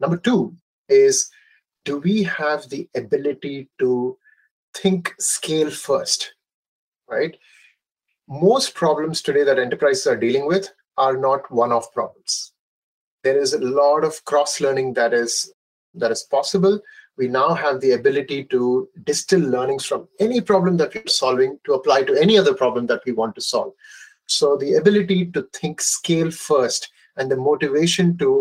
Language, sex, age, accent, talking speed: English, male, 30-49, Indian, 155 wpm